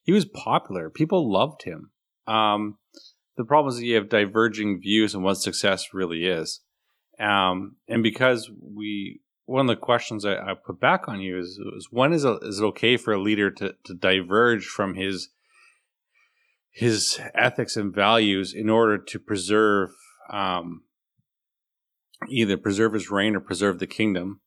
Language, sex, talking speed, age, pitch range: English, male, 160 wpm, 30-49, 95-115 Hz